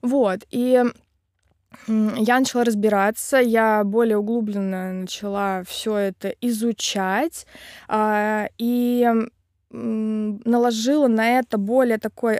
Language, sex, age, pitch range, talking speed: Russian, female, 20-39, 205-240 Hz, 85 wpm